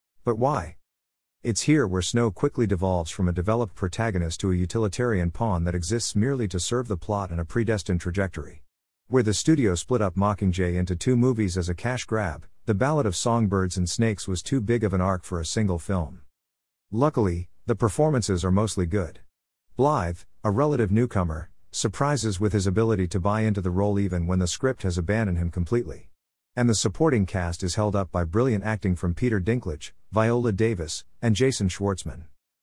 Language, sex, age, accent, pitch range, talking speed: English, male, 50-69, American, 90-115 Hz, 185 wpm